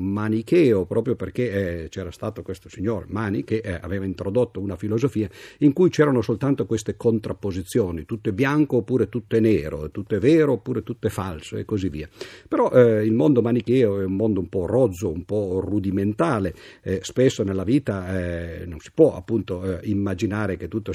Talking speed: 185 wpm